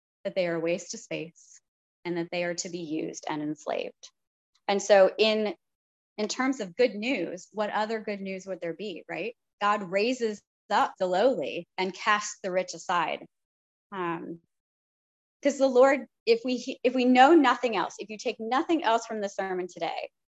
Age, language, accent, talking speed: 20-39, English, American, 185 wpm